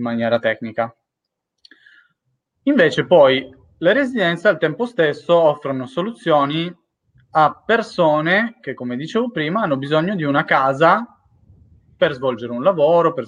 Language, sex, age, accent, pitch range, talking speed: Italian, male, 30-49, native, 130-180 Hz, 120 wpm